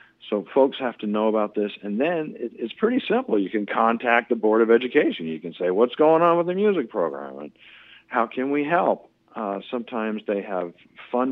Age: 50-69